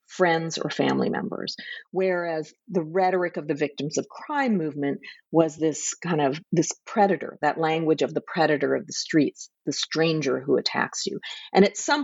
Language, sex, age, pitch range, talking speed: English, female, 40-59, 145-195 Hz, 175 wpm